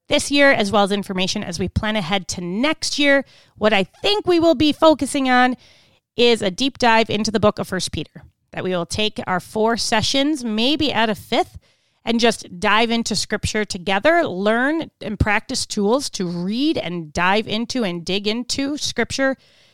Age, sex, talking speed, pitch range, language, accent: 30-49, female, 185 wpm, 190-275 Hz, English, American